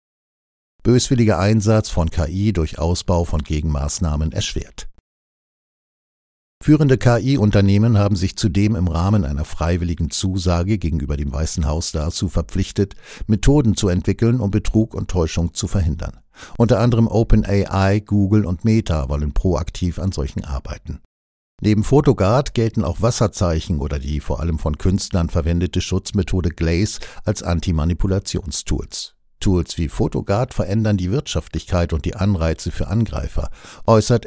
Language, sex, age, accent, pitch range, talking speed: German, male, 60-79, German, 85-110 Hz, 130 wpm